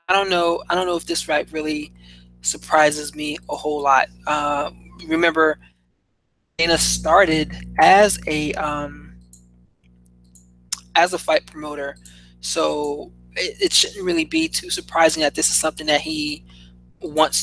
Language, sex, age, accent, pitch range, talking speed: English, male, 20-39, American, 150-160 Hz, 140 wpm